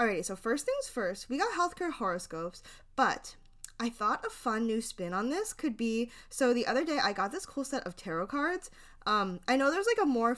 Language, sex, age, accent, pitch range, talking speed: English, female, 10-29, American, 190-260 Hz, 225 wpm